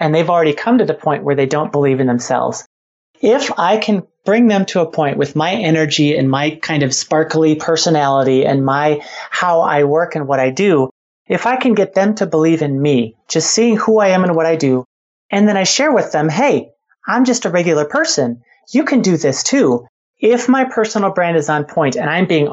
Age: 30-49